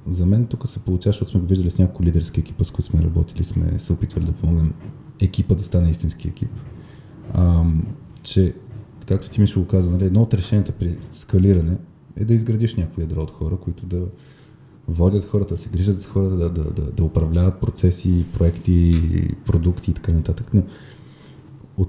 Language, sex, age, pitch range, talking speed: Bulgarian, male, 20-39, 90-115 Hz, 190 wpm